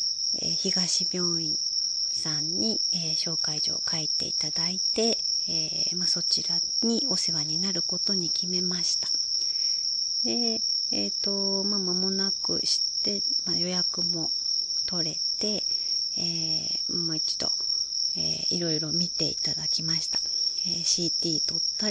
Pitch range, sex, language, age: 165-190 Hz, female, Japanese, 40-59